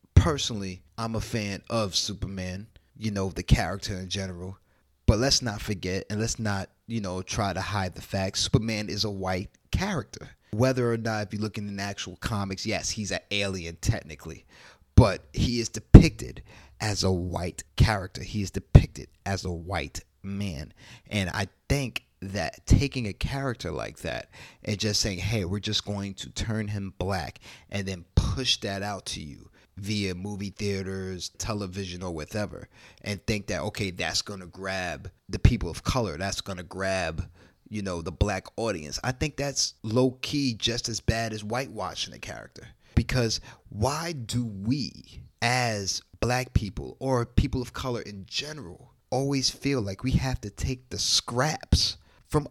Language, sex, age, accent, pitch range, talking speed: English, male, 30-49, American, 95-120 Hz, 170 wpm